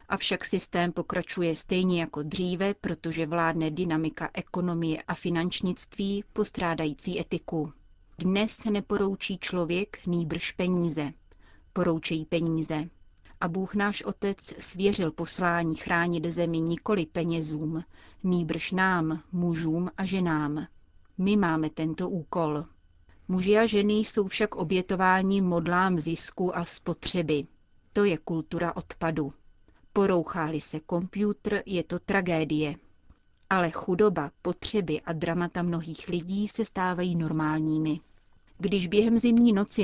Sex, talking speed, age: female, 110 wpm, 30-49